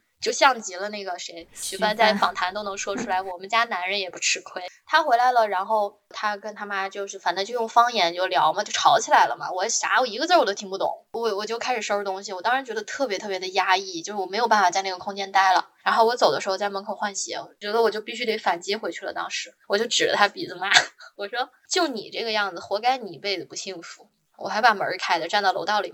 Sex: female